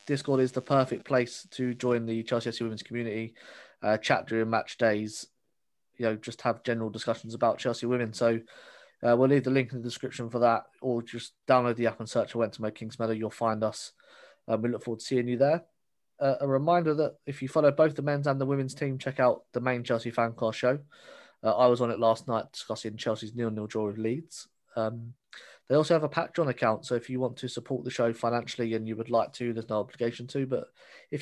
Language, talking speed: English, 235 wpm